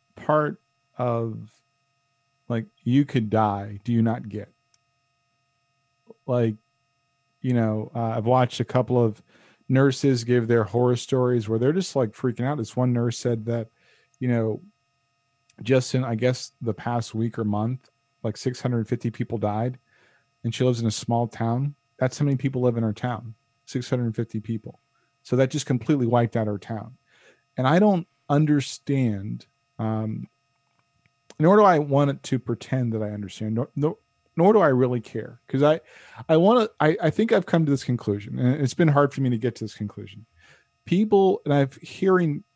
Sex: male